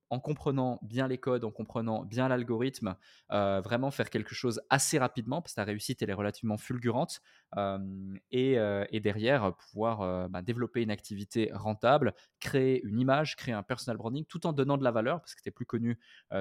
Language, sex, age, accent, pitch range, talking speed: French, male, 20-39, French, 105-130 Hz, 200 wpm